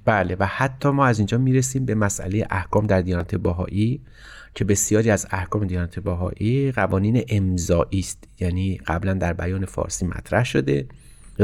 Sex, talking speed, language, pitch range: male, 155 wpm, Persian, 95-115 Hz